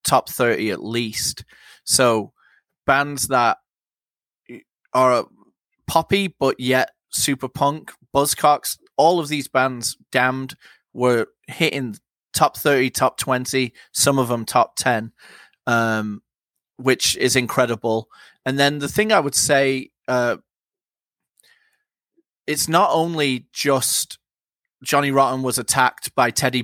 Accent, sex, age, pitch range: British, male, 30-49, 120-140 Hz